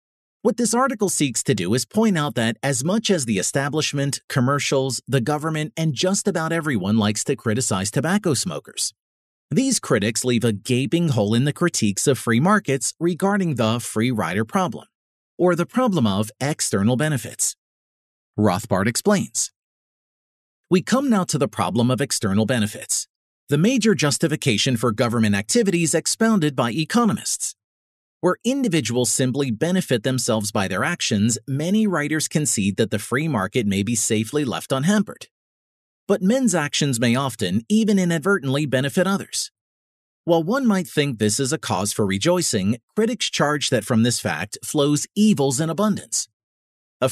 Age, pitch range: 40-59, 115-180 Hz